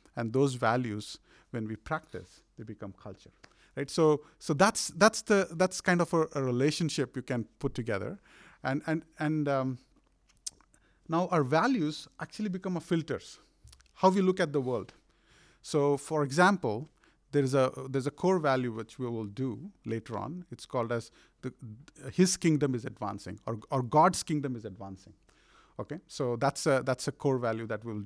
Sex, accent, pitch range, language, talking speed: male, Indian, 115-155 Hz, English, 175 wpm